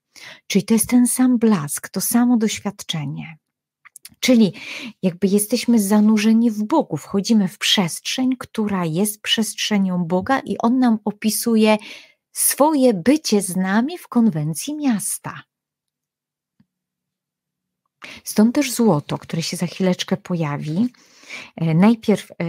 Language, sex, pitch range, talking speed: Polish, female, 180-220 Hz, 110 wpm